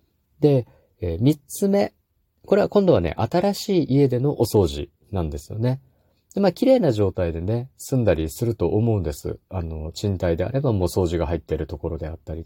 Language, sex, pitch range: Japanese, male, 85-125 Hz